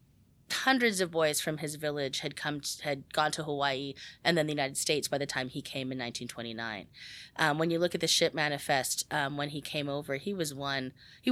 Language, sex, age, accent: English, female, 30-49, American